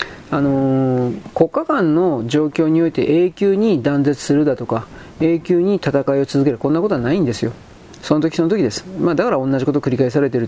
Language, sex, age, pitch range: Japanese, male, 40-59, 135-170 Hz